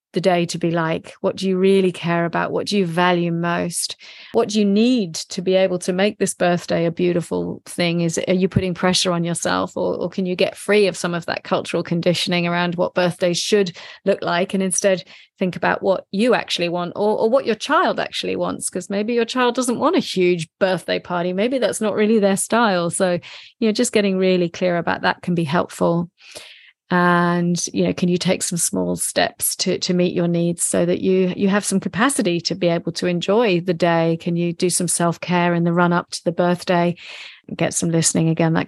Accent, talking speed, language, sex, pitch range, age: British, 225 wpm, English, female, 175-210 Hz, 30-49